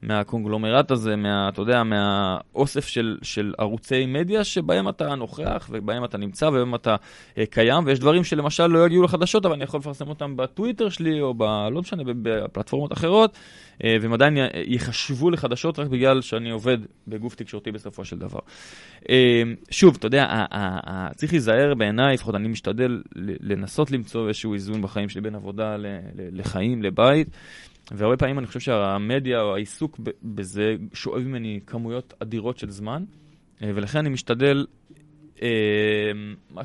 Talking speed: 160 wpm